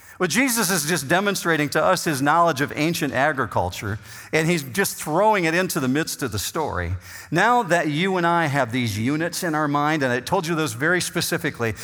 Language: English